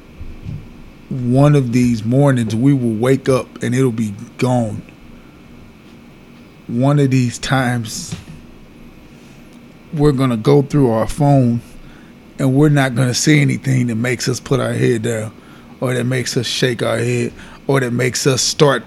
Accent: American